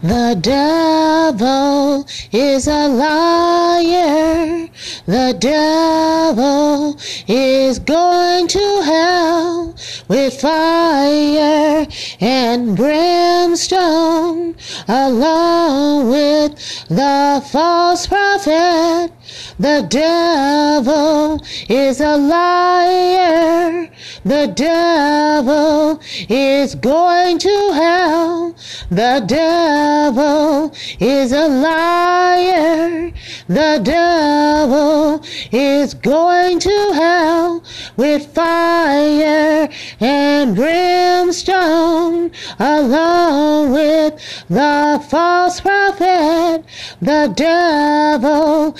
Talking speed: 65 wpm